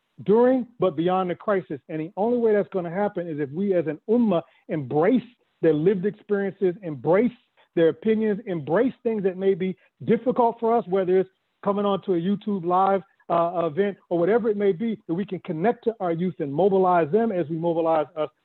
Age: 50-69